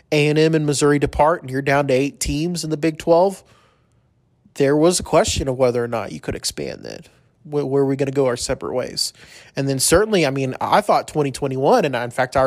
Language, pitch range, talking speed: English, 130-155 Hz, 235 wpm